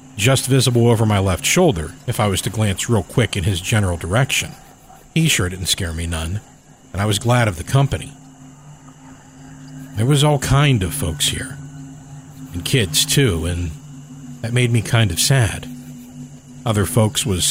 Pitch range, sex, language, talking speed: 95-130 Hz, male, English, 170 wpm